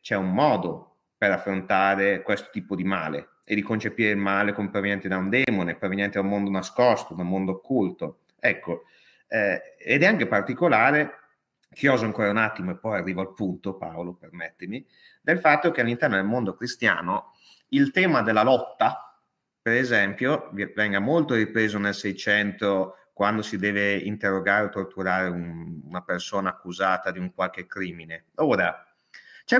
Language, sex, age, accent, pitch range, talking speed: Italian, male, 30-49, native, 95-115 Hz, 160 wpm